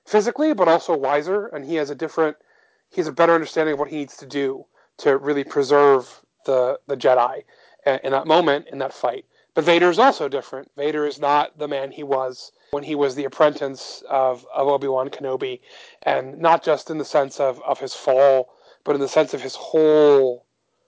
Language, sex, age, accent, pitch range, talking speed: English, male, 30-49, American, 135-180 Hz, 200 wpm